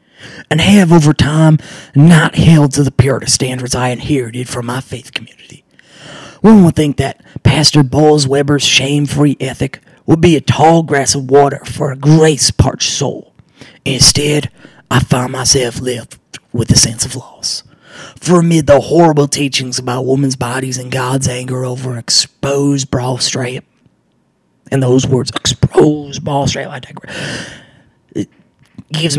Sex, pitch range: male, 125-145 Hz